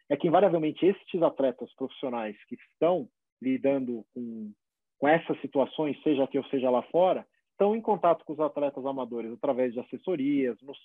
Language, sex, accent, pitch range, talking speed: Portuguese, male, Brazilian, 135-190 Hz, 165 wpm